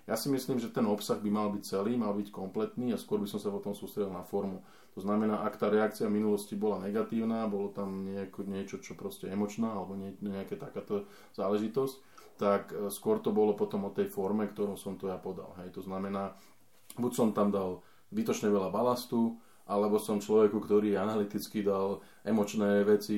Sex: male